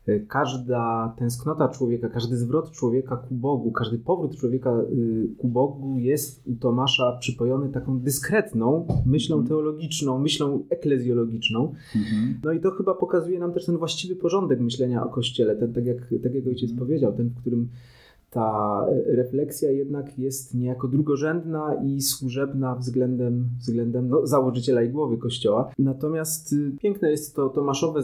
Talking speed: 140 wpm